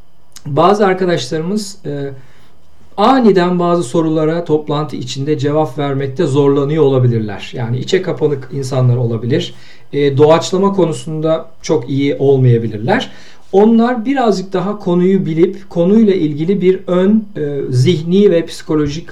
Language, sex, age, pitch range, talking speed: Turkish, male, 50-69, 135-175 Hz, 115 wpm